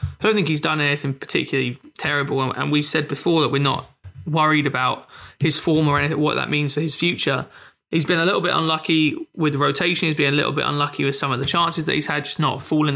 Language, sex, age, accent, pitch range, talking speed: English, male, 20-39, British, 140-165 Hz, 240 wpm